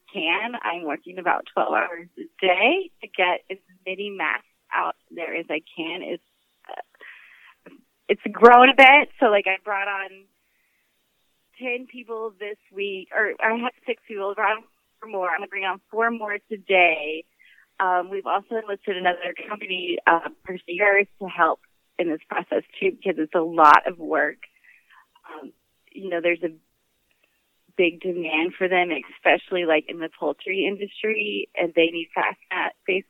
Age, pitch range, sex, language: 30-49, 180-220 Hz, female, English